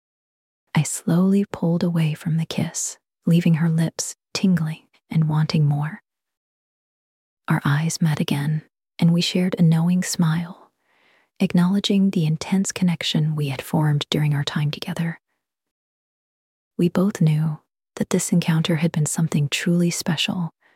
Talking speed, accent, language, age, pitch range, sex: 135 wpm, American, English, 30-49, 160-190 Hz, female